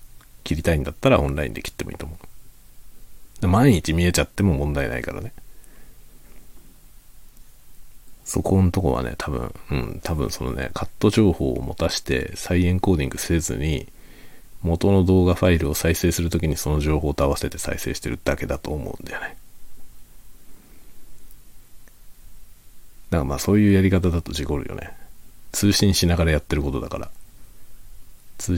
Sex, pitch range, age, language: male, 75-95 Hz, 40-59, Japanese